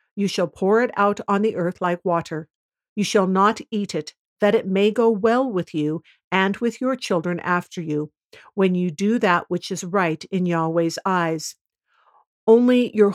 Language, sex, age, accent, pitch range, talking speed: English, female, 50-69, American, 170-210 Hz, 185 wpm